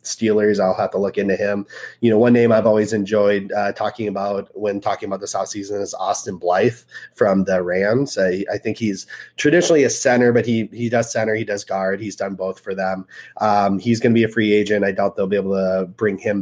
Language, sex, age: English, male, 30-49